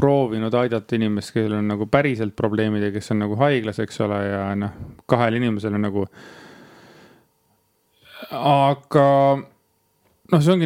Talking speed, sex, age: 130 wpm, male, 30-49